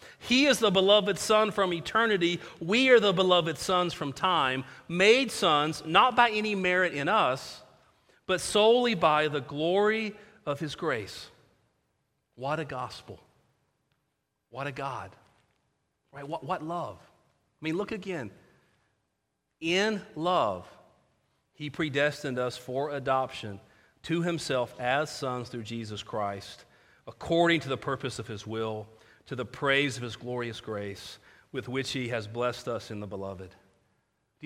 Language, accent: English, American